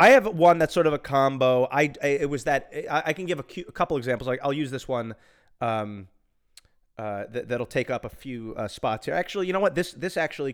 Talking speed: 255 wpm